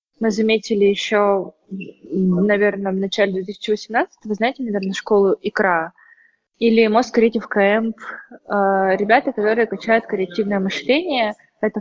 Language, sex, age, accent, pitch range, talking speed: Russian, female, 20-39, native, 190-225 Hz, 105 wpm